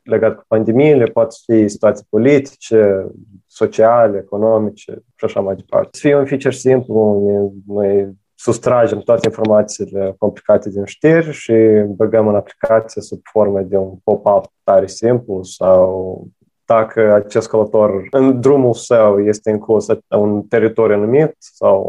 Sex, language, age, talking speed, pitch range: male, Romanian, 20-39, 140 wpm, 105-120 Hz